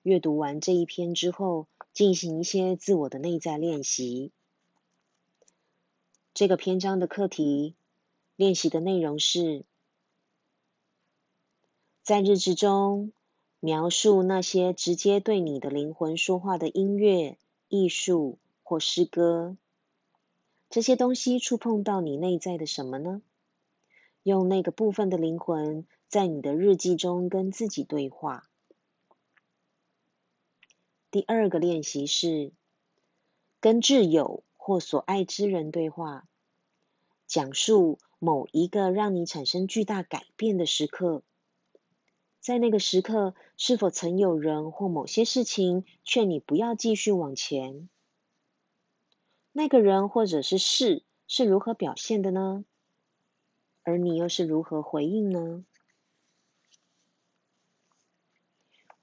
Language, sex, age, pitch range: Chinese, female, 30-49, 160-200 Hz